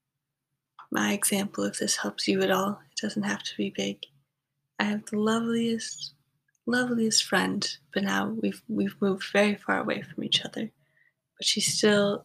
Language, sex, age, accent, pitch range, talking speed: English, female, 20-39, American, 140-200 Hz, 165 wpm